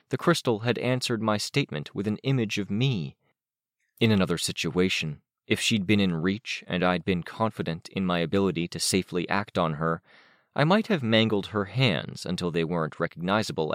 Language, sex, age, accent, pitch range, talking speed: English, male, 30-49, American, 85-120 Hz, 180 wpm